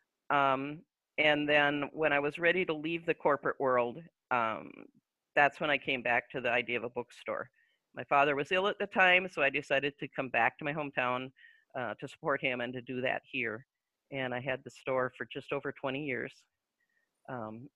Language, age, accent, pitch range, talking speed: English, 40-59, American, 130-170 Hz, 205 wpm